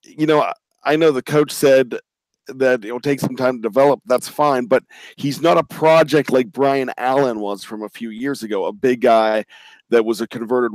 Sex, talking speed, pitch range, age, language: male, 205 wpm, 120-145 Hz, 40-59, English